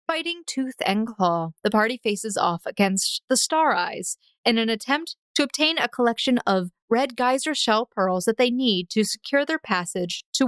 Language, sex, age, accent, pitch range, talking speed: English, female, 30-49, American, 195-250 Hz, 185 wpm